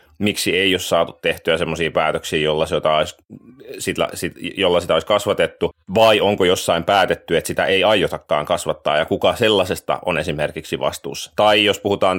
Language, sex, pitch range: Finnish, male, 90-110 Hz